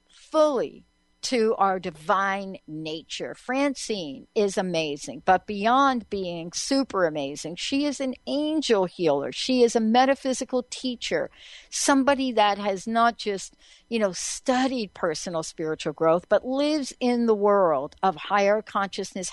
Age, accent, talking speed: 60-79, American, 130 wpm